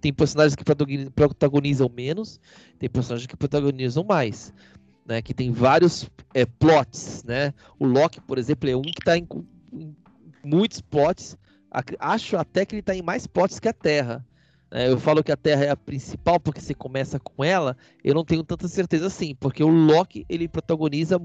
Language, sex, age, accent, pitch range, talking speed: Portuguese, male, 20-39, Brazilian, 130-165 Hz, 180 wpm